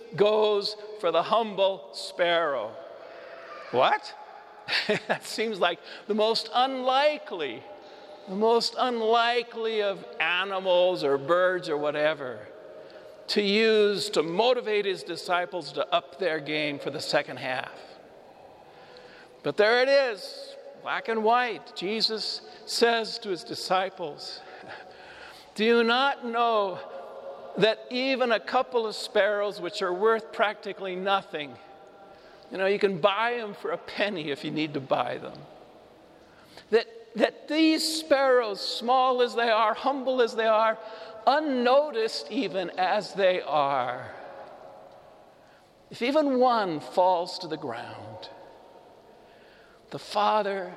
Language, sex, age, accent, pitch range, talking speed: English, male, 50-69, American, 185-235 Hz, 120 wpm